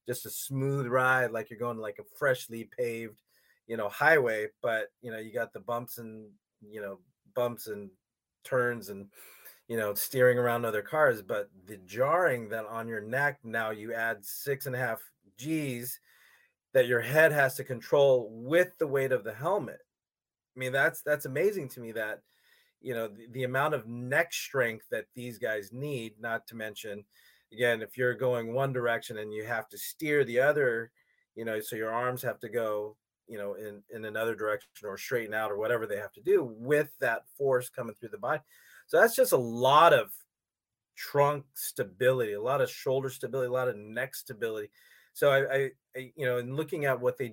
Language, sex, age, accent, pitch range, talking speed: English, male, 30-49, American, 115-145 Hz, 200 wpm